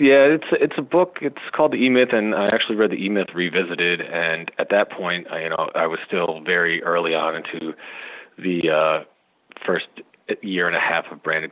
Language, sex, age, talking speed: English, male, 40-59, 220 wpm